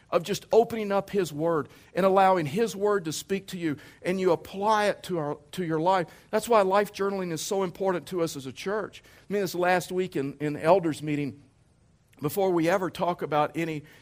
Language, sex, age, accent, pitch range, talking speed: English, male, 50-69, American, 130-180 Hz, 215 wpm